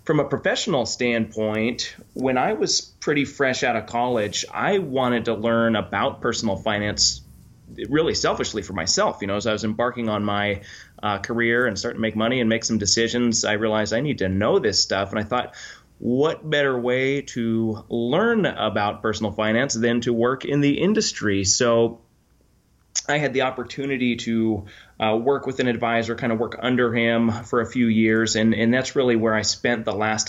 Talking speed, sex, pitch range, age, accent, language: 190 wpm, male, 110-120 Hz, 30-49, American, English